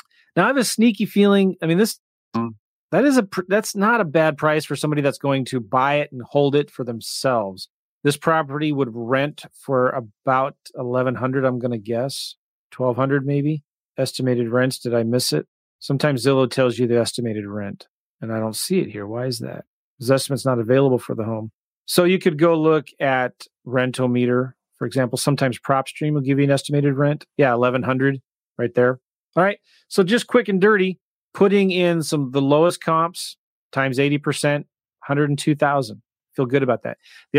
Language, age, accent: English, 40-59, American